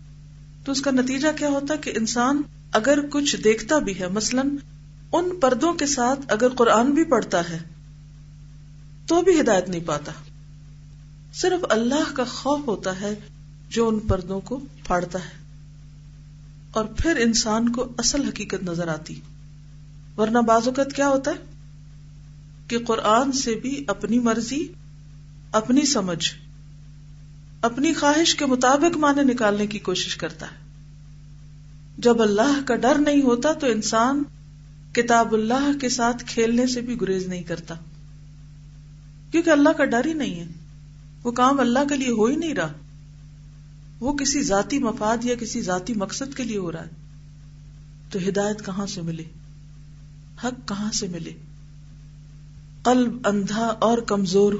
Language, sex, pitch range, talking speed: Urdu, female, 150-245 Hz, 145 wpm